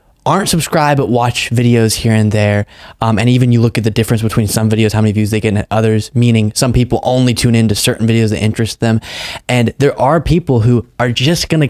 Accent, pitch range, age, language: American, 105-125 Hz, 20-39, English